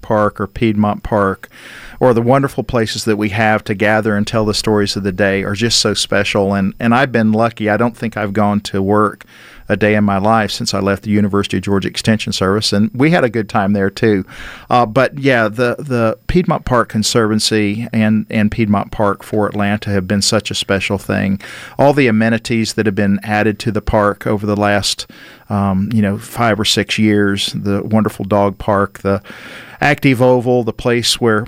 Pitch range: 105-115 Hz